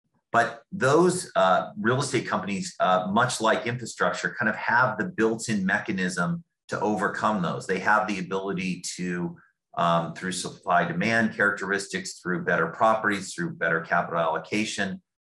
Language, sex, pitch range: English, male, 95-115 Hz